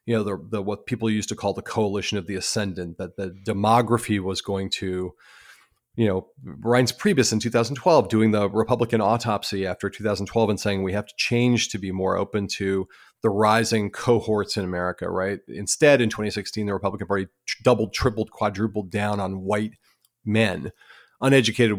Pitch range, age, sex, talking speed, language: 100-115 Hz, 40-59, male, 175 wpm, English